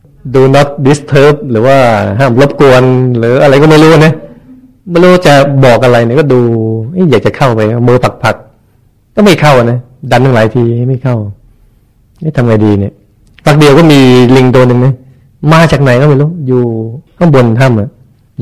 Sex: male